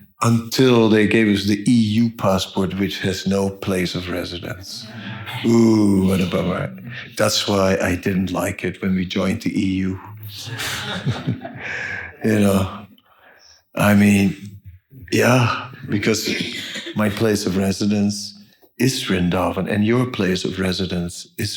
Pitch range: 95-110 Hz